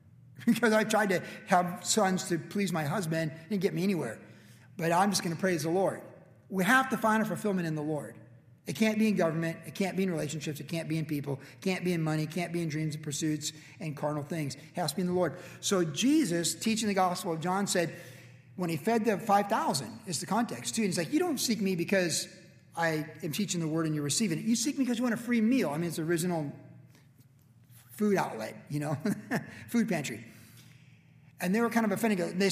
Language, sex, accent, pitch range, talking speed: English, male, American, 155-225 Hz, 240 wpm